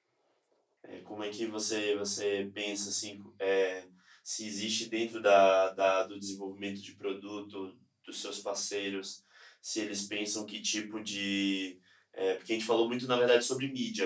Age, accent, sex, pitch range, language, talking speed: 20-39, Brazilian, male, 95-110 Hz, Portuguese, 155 wpm